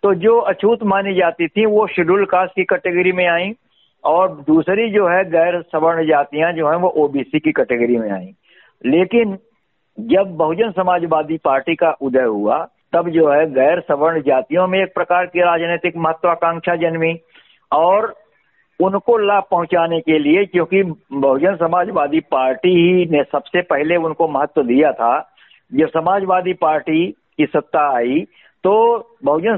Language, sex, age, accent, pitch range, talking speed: Hindi, male, 60-79, native, 140-180 Hz, 150 wpm